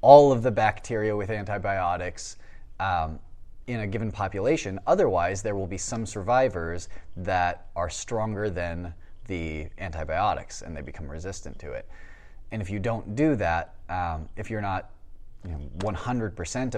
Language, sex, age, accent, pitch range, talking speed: English, male, 20-39, American, 90-110 Hz, 145 wpm